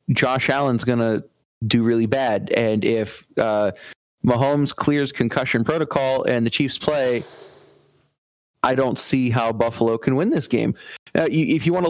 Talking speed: 160 wpm